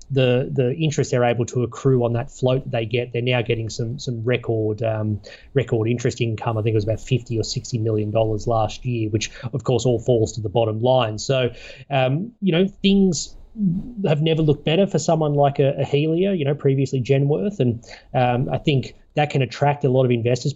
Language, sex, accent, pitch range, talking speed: English, male, Australian, 115-140 Hz, 215 wpm